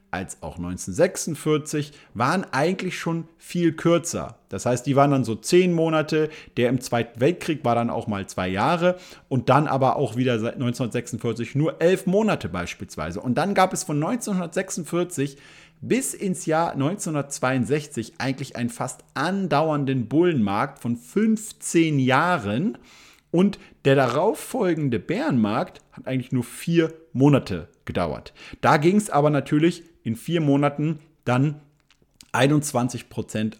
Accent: German